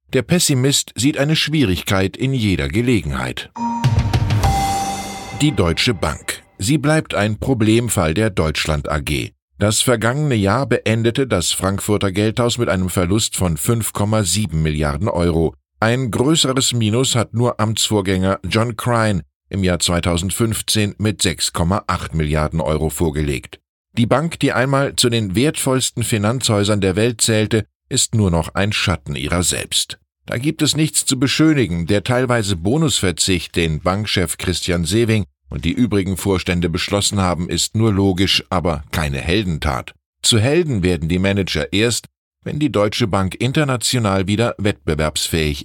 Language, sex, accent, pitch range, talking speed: German, male, German, 90-120 Hz, 135 wpm